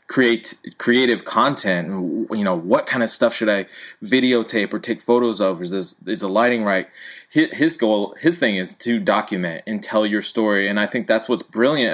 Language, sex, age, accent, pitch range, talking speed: English, male, 20-39, American, 95-120 Hz, 190 wpm